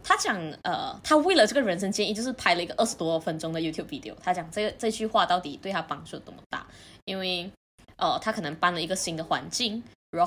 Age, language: 20-39, Chinese